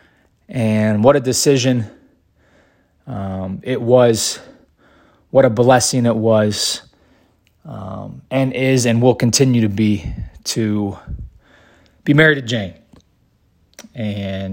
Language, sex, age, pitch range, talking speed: English, male, 20-39, 100-125 Hz, 105 wpm